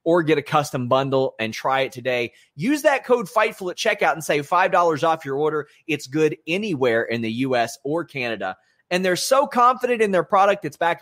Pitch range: 125-175 Hz